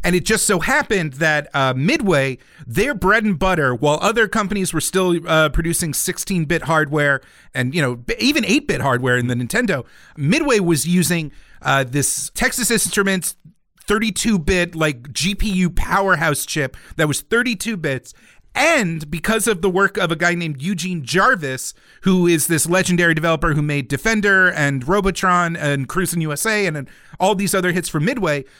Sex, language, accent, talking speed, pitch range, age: male, English, American, 165 wpm, 145-190 Hz, 40-59